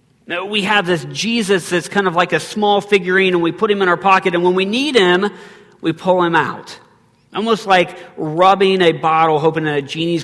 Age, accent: 40-59, American